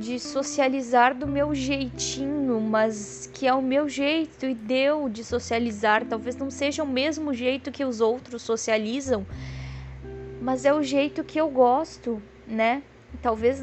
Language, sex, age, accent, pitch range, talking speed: Portuguese, female, 20-39, Brazilian, 200-250 Hz, 150 wpm